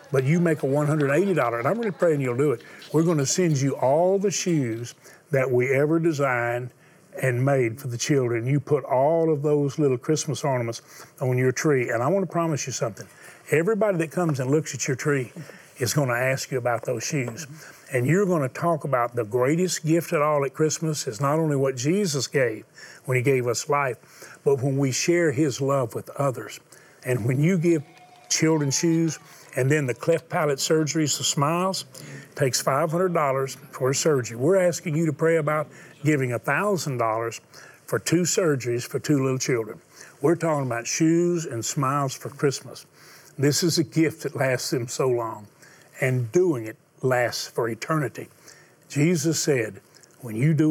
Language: English